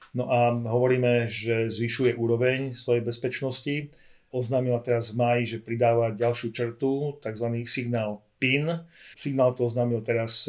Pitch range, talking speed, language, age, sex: 115-130 Hz, 125 wpm, Slovak, 40-59, male